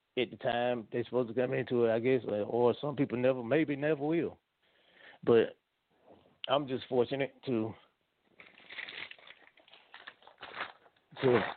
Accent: American